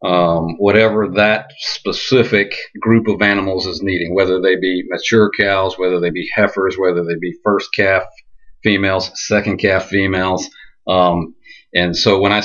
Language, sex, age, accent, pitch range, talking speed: English, male, 40-59, American, 95-120 Hz, 155 wpm